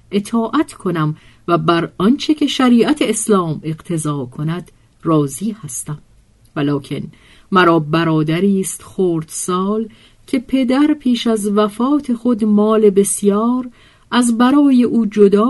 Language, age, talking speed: Persian, 50-69, 115 wpm